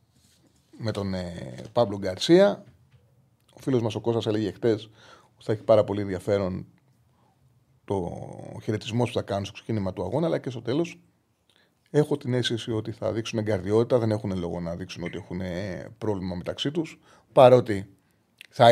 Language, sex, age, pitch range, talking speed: Greek, male, 30-49, 105-130 Hz, 160 wpm